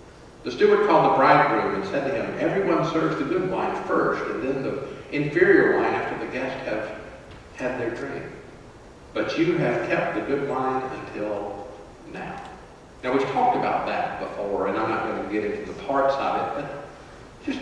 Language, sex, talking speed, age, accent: English, male, 185 wpm, 50-69, American